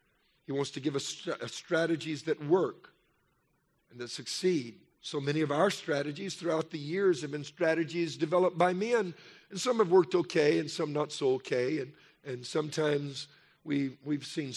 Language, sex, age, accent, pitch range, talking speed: English, male, 50-69, American, 130-160 Hz, 170 wpm